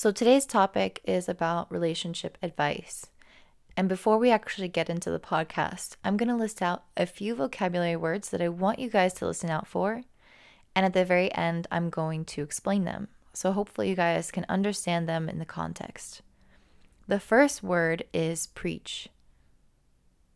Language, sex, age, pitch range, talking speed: English, female, 20-39, 165-200 Hz, 170 wpm